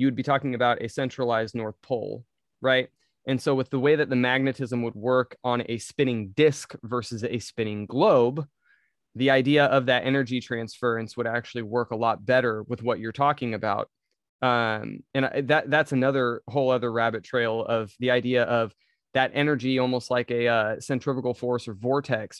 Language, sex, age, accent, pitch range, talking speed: English, male, 20-39, American, 115-130 Hz, 180 wpm